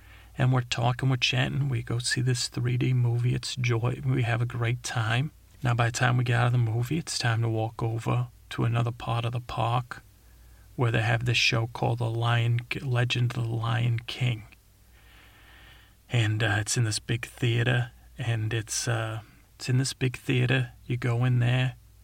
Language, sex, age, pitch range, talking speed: English, male, 30-49, 110-125 Hz, 195 wpm